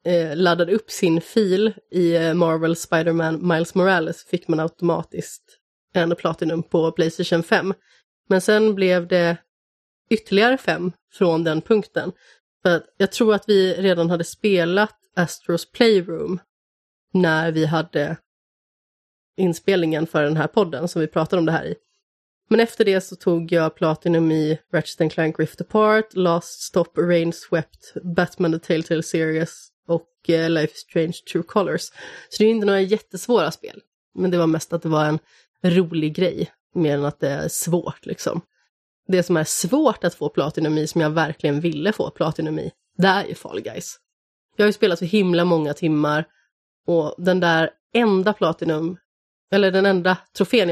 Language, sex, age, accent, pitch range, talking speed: Swedish, female, 30-49, native, 160-190 Hz, 160 wpm